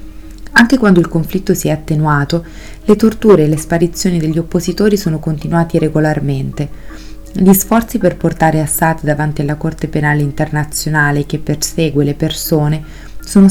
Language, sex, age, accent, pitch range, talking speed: Italian, female, 30-49, native, 150-185 Hz, 140 wpm